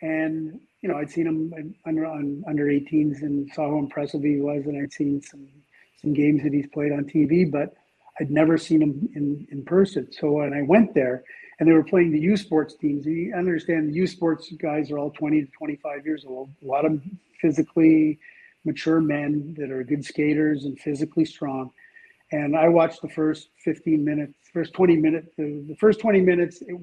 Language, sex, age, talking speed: English, male, 40-59, 200 wpm